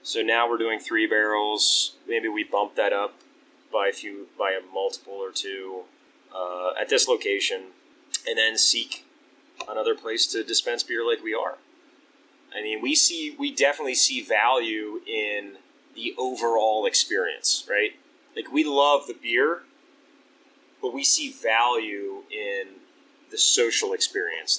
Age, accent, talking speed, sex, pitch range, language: 30-49, American, 145 wpm, male, 270-440 Hz, English